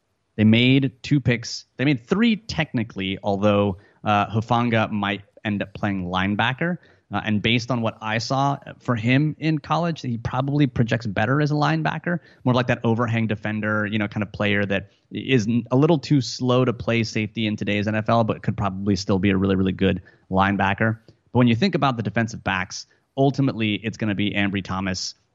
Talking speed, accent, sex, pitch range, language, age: 190 wpm, American, male, 105-135 Hz, English, 30-49